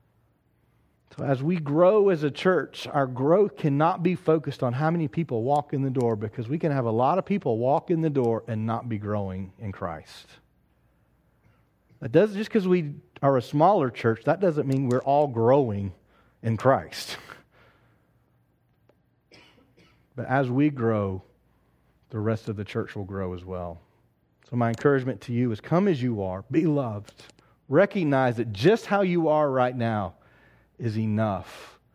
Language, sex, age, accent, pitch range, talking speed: English, male, 40-59, American, 110-145 Hz, 165 wpm